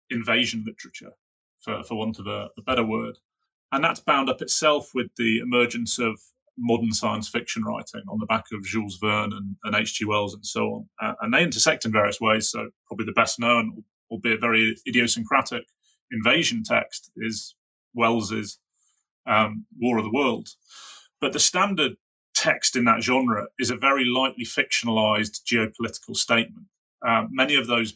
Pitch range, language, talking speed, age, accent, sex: 110-125 Hz, English, 165 wpm, 30-49, British, male